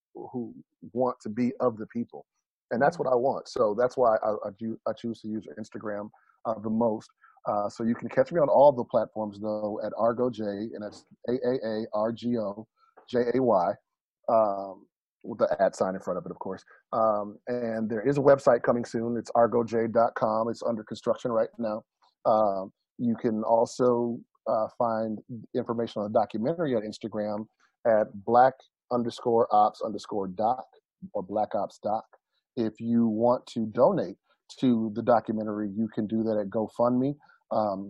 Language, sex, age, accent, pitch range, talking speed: English, male, 40-59, American, 110-120 Hz, 170 wpm